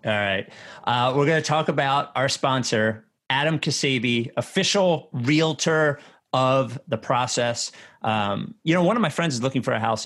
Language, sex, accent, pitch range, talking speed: English, male, American, 110-140 Hz, 175 wpm